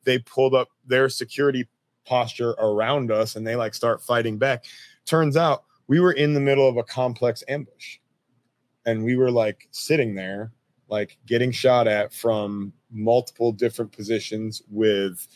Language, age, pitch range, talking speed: English, 30-49, 105-130 Hz, 155 wpm